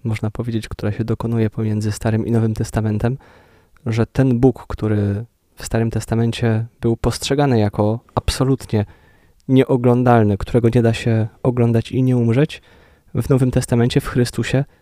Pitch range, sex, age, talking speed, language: 105-125 Hz, male, 20-39, 140 wpm, Polish